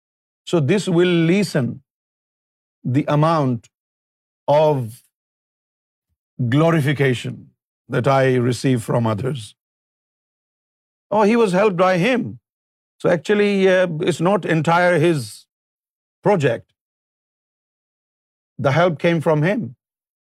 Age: 50-69